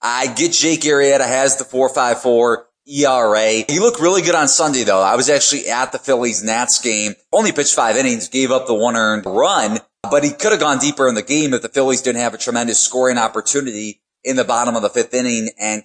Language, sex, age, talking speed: English, male, 20-39, 225 wpm